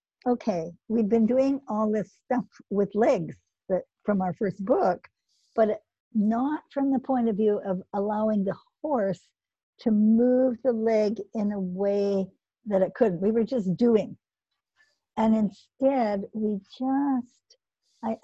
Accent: American